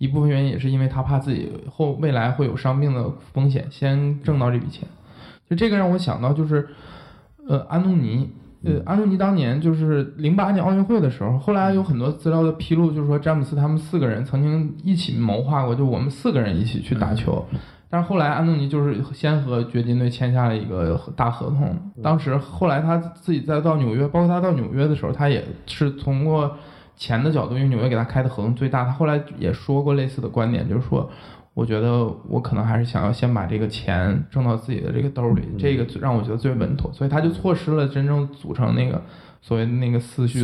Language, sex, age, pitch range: Chinese, male, 20-39, 120-155 Hz